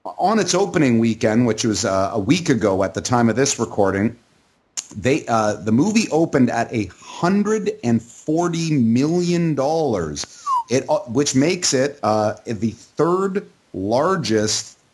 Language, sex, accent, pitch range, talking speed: English, male, American, 115-155 Hz, 135 wpm